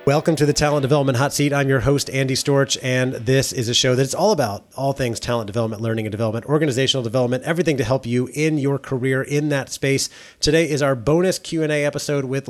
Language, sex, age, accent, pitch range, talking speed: English, male, 30-49, American, 120-145 Hz, 235 wpm